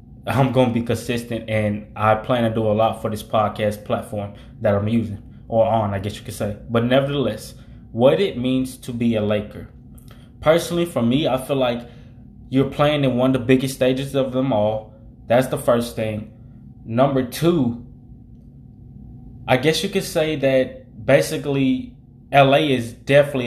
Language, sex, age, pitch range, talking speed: English, male, 20-39, 115-130 Hz, 175 wpm